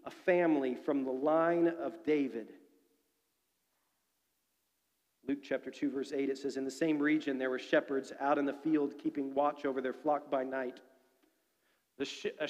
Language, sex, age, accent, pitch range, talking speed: English, male, 40-59, American, 145-185 Hz, 160 wpm